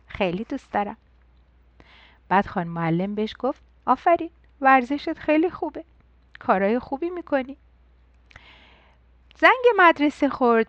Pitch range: 195-265 Hz